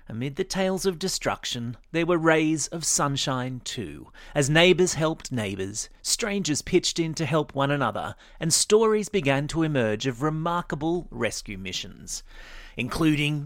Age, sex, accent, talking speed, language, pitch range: 30-49, male, Australian, 145 wpm, English, 120-170 Hz